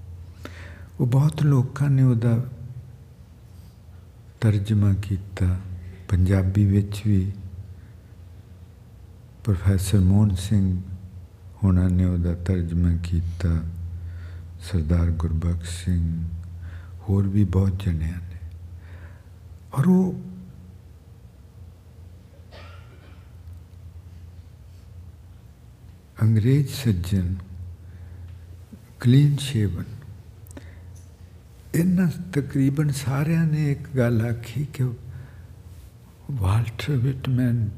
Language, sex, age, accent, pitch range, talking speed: English, male, 60-79, Indian, 90-120 Hz, 50 wpm